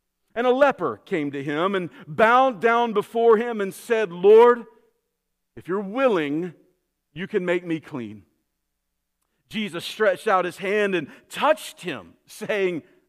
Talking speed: 140 wpm